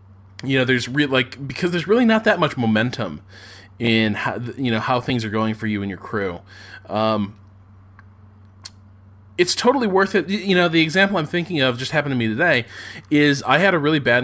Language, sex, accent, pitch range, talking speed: English, male, American, 110-130 Hz, 200 wpm